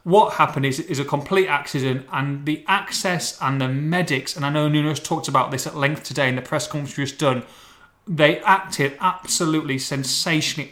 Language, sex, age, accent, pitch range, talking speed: English, male, 30-49, British, 140-175 Hz, 190 wpm